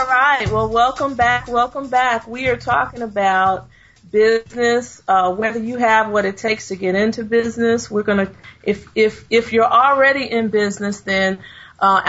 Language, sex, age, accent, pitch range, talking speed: English, female, 40-59, American, 200-240 Hz, 170 wpm